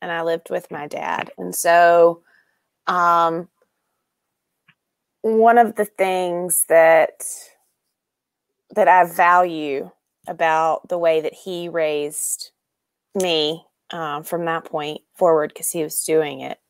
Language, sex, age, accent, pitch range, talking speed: English, female, 20-39, American, 165-190 Hz, 120 wpm